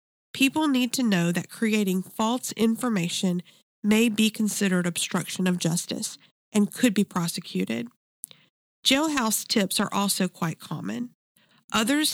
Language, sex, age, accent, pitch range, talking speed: English, female, 40-59, American, 185-225 Hz, 125 wpm